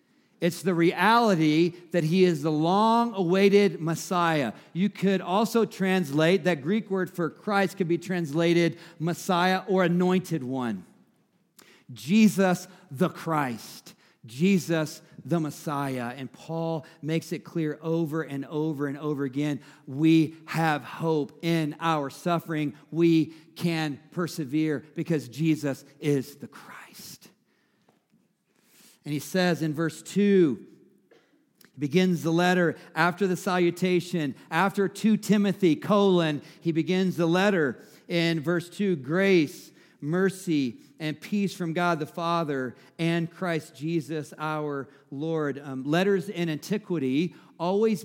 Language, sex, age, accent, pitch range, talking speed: English, male, 50-69, American, 155-185 Hz, 120 wpm